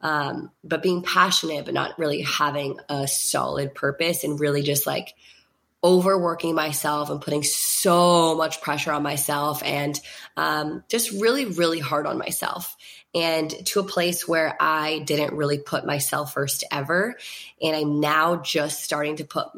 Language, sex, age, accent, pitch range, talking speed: English, female, 20-39, American, 150-180 Hz, 155 wpm